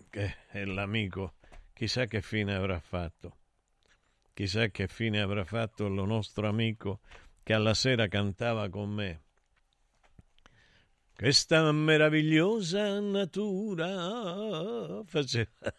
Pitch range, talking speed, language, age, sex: 100-140 Hz, 100 wpm, Italian, 50-69, male